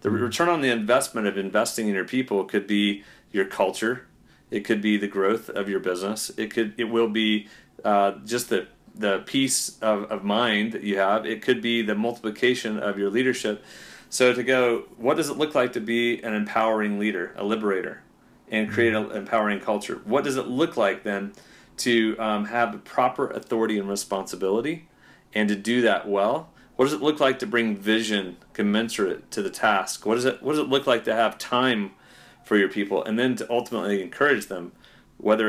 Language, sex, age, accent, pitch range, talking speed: English, male, 40-59, American, 100-120 Hz, 195 wpm